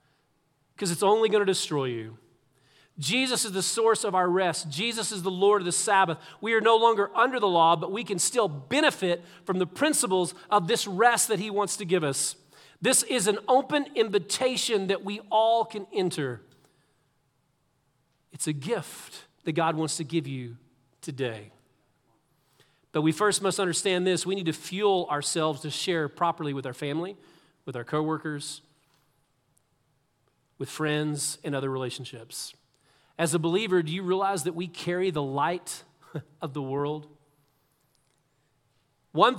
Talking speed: 160 wpm